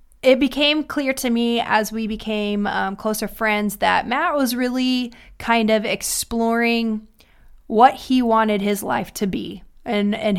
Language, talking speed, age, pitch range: English, 155 wpm, 20-39, 200-235 Hz